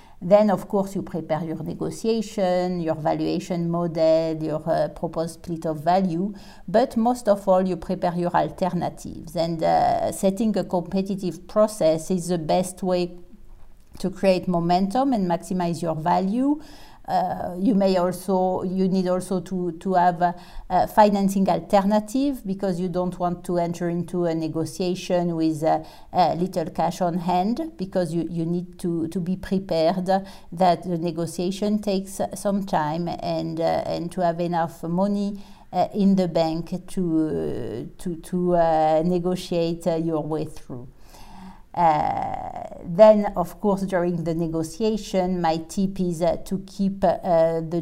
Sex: female